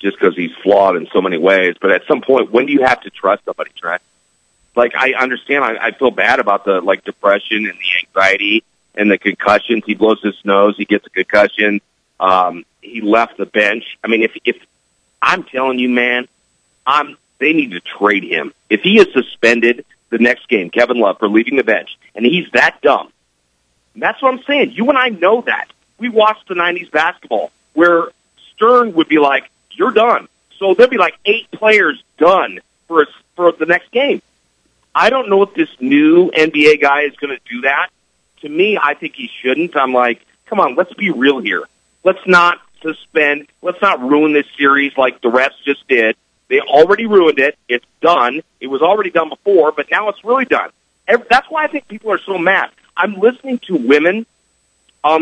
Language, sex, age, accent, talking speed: English, male, 40-59, American, 200 wpm